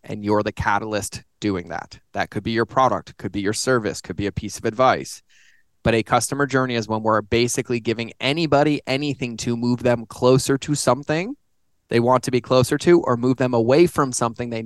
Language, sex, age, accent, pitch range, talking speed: English, male, 20-39, American, 110-130 Hz, 210 wpm